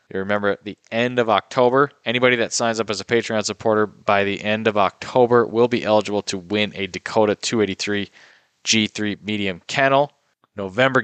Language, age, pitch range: English, 20-39, 105-120 Hz